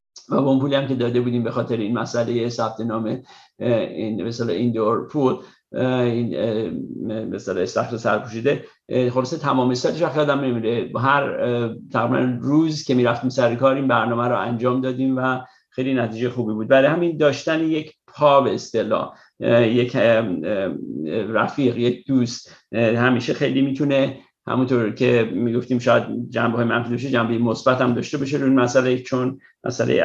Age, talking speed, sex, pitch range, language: 50-69, 150 wpm, male, 115-130 Hz, Persian